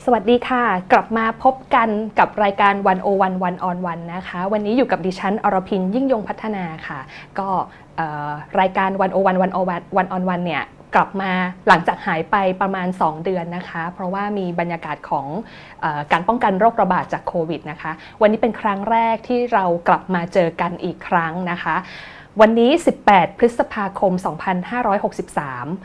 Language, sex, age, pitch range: Thai, female, 20-39, 170-210 Hz